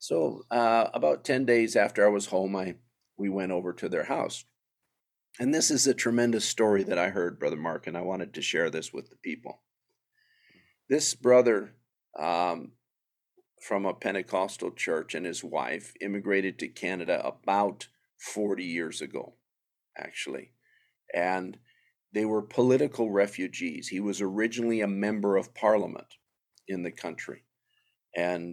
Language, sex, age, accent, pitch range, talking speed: English, male, 50-69, American, 95-115 Hz, 145 wpm